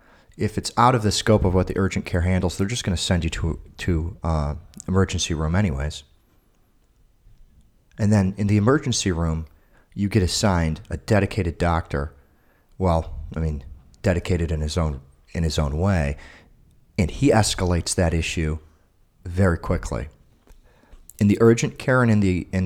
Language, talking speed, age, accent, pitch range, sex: English, 165 wpm, 40-59, American, 80-105 Hz, male